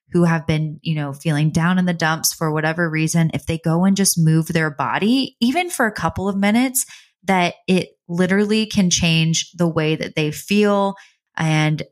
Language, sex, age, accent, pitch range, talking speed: English, female, 20-39, American, 160-190 Hz, 190 wpm